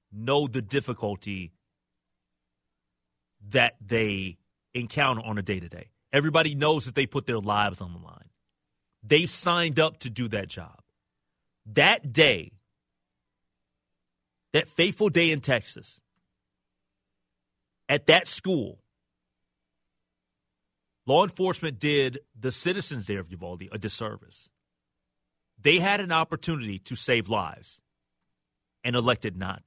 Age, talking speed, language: 30-49, 115 wpm, English